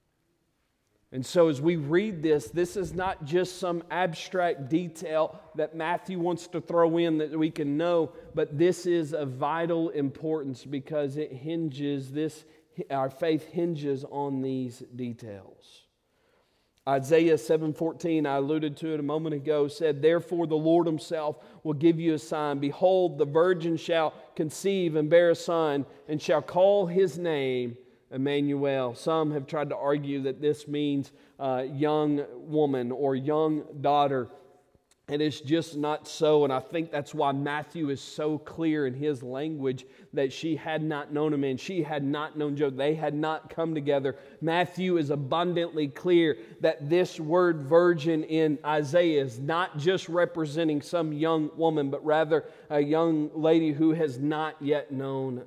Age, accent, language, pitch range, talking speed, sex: 40-59, American, English, 145-165 Hz, 160 wpm, male